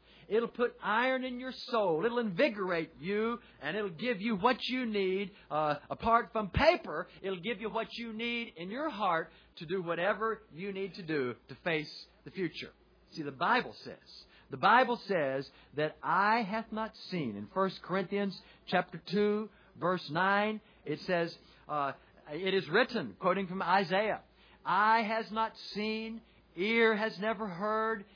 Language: English